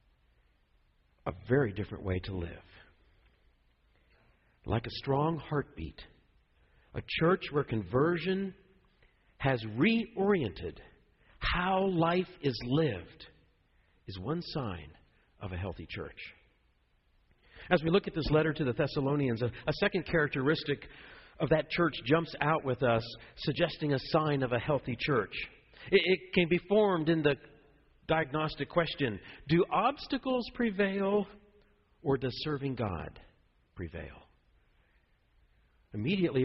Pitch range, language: 105-175 Hz, English